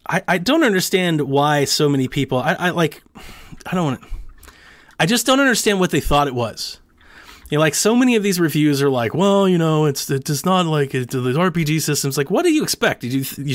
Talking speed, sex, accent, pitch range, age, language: 235 wpm, male, American, 125-165 Hz, 30-49, English